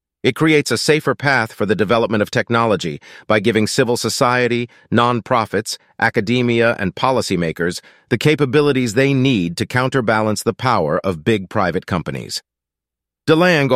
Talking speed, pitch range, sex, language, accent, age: 135 wpm, 110-140 Hz, male, English, American, 40-59